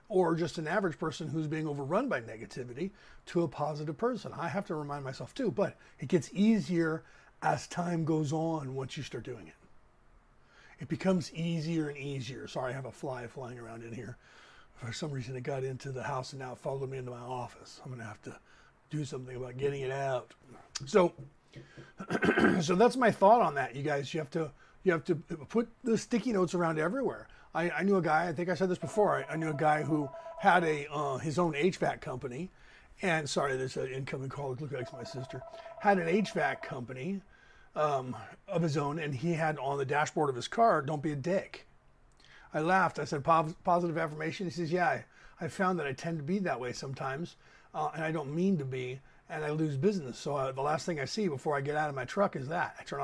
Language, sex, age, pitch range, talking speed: English, male, 30-49, 135-175 Hz, 225 wpm